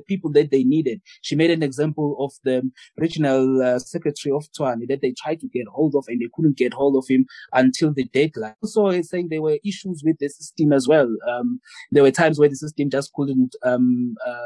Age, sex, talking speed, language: 20-39, male, 225 wpm, English